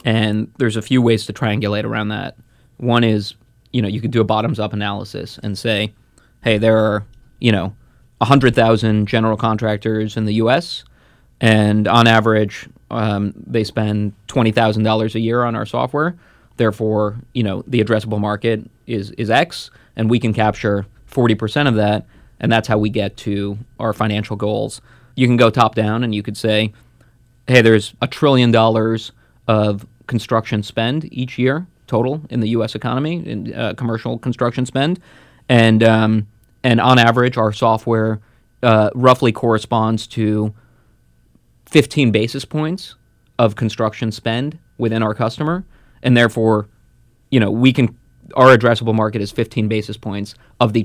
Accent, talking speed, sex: American, 165 wpm, male